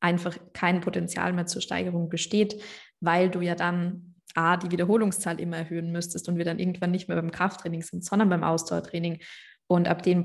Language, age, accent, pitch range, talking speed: German, 20-39, German, 170-190 Hz, 190 wpm